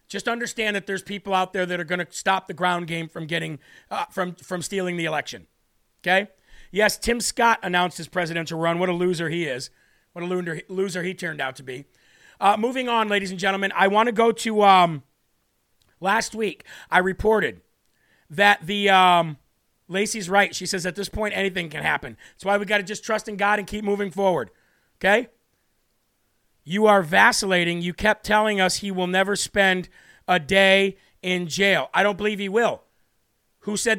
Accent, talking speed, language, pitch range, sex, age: American, 190 wpm, English, 180-205 Hz, male, 40-59